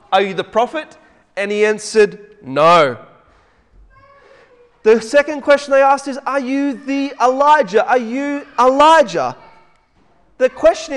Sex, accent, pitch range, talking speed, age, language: male, Australian, 210-270 Hz, 125 wpm, 30-49, English